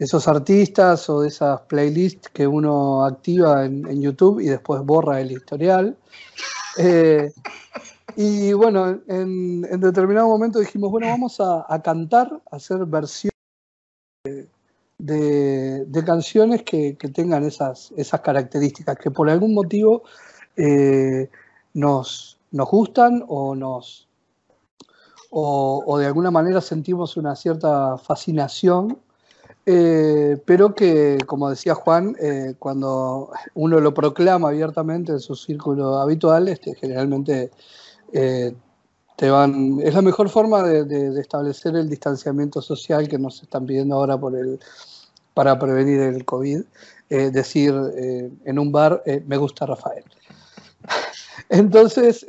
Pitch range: 140-185 Hz